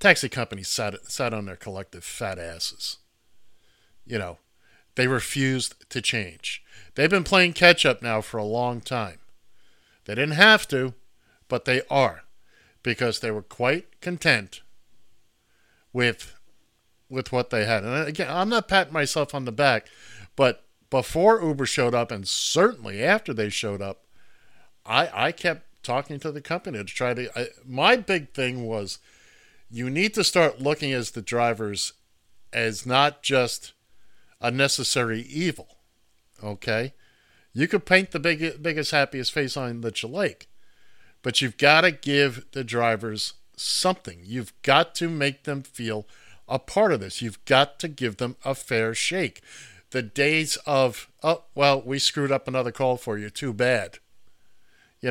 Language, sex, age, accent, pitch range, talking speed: English, male, 50-69, American, 115-145 Hz, 155 wpm